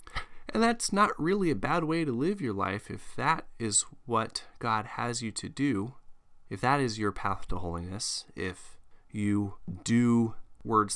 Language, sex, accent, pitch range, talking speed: English, male, American, 95-125 Hz, 170 wpm